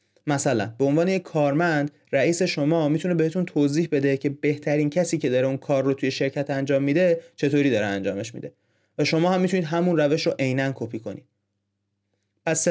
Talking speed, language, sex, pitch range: 180 wpm, Persian, male, 120-160 Hz